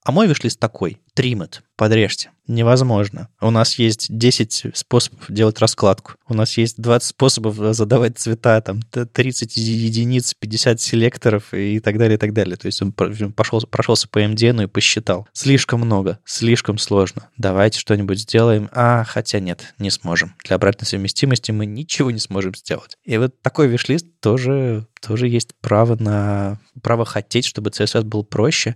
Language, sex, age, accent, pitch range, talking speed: Russian, male, 20-39, native, 100-125 Hz, 160 wpm